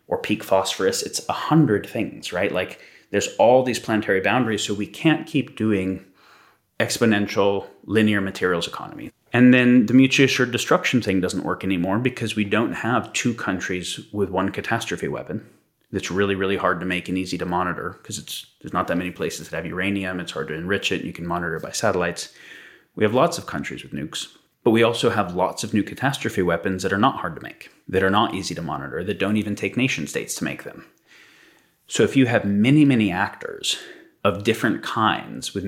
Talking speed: 205 wpm